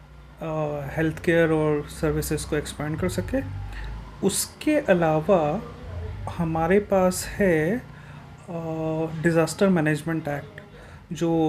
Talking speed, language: 90 wpm, Hindi